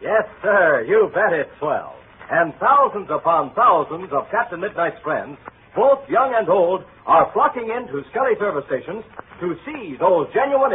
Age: 60-79